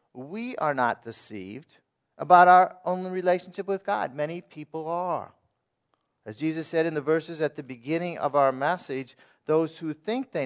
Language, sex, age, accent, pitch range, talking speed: English, male, 40-59, American, 125-165 Hz, 165 wpm